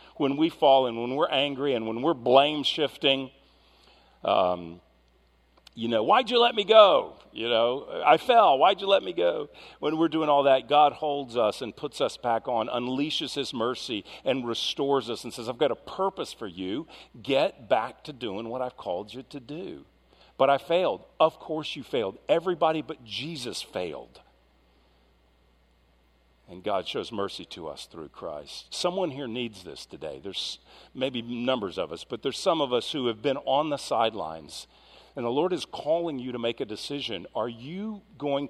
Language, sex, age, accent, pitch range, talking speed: English, male, 50-69, American, 90-150 Hz, 185 wpm